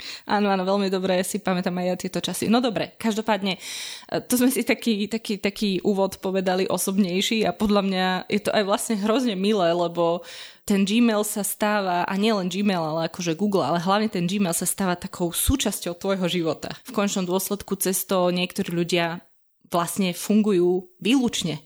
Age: 20-39